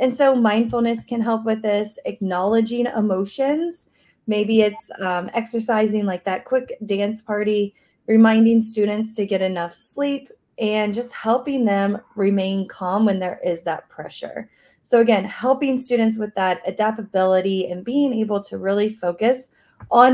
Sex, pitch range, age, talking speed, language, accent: female, 190-240 Hz, 20-39, 145 wpm, English, American